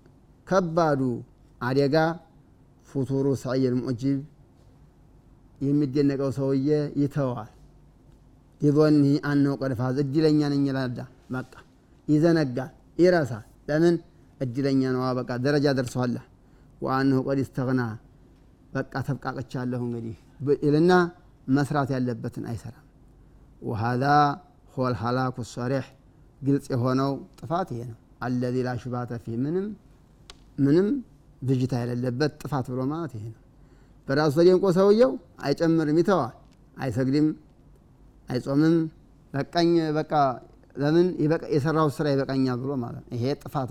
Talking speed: 95 wpm